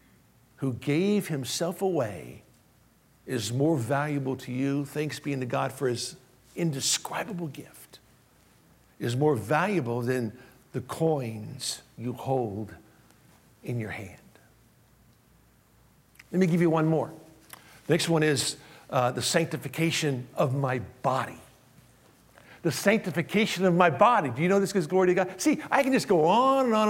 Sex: male